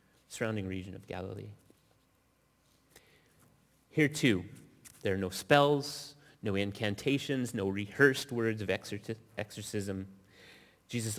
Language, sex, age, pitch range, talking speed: English, male, 30-49, 95-120 Hz, 95 wpm